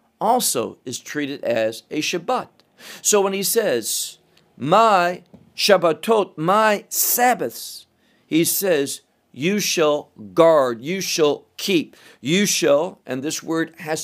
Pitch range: 145-195 Hz